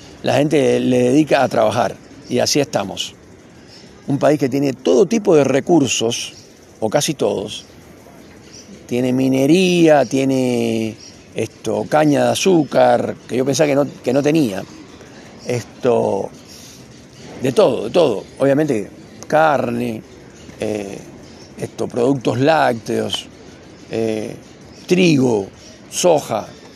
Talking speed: 110 wpm